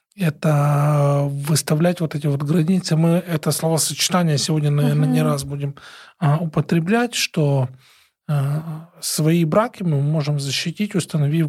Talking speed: 115 wpm